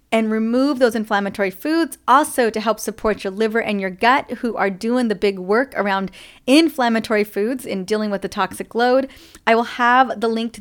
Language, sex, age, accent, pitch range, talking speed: English, female, 30-49, American, 210-255 Hz, 200 wpm